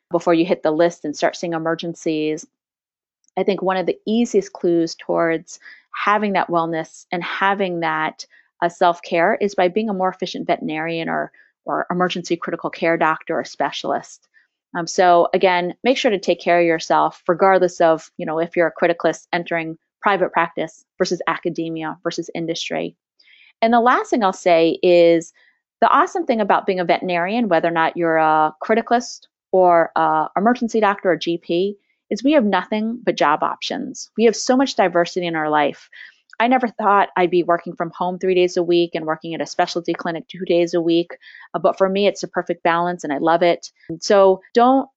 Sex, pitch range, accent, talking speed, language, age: female, 165-195 Hz, American, 190 wpm, English, 30-49